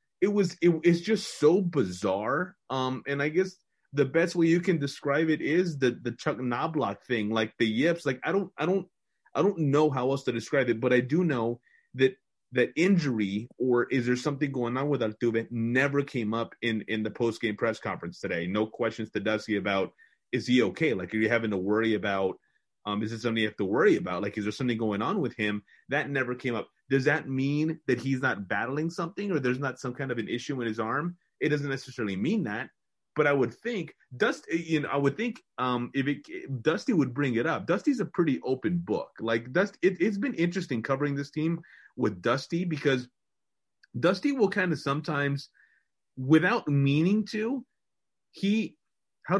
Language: English